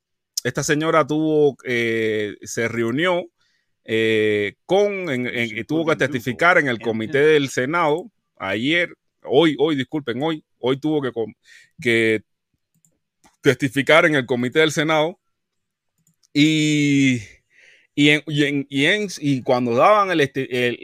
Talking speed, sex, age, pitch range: 135 wpm, male, 30-49, 115-150 Hz